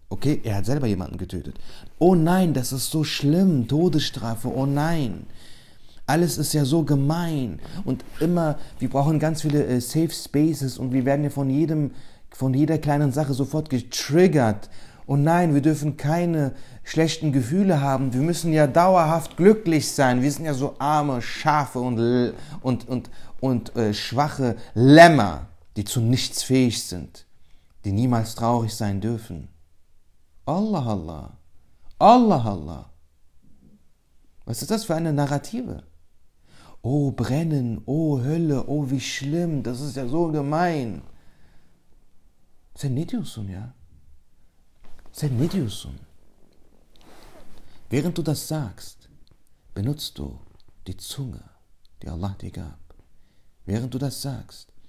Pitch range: 95-150 Hz